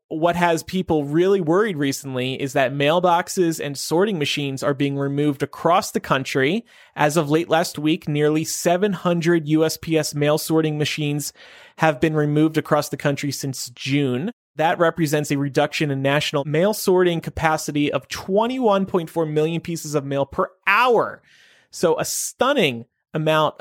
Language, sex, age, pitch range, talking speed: English, male, 30-49, 145-170 Hz, 145 wpm